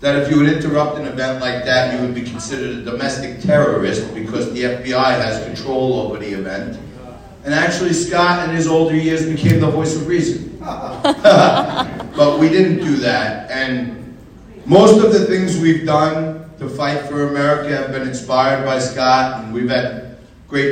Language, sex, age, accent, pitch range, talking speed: English, male, 40-59, American, 125-150 Hz, 175 wpm